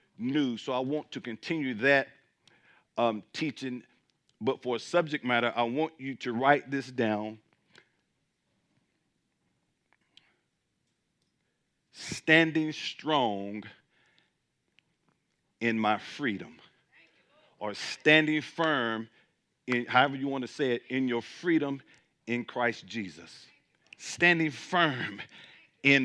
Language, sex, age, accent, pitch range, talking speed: English, male, 50-69, American, 115-145 Hz, 105 wpm